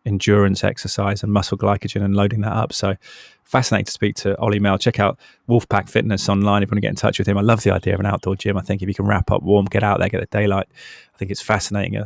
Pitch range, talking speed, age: 100-105 Hz, 280 wpm, 20-39